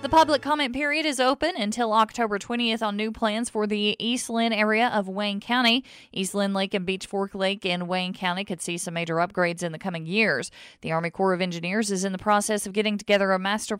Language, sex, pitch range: English, female, 130-205 Hz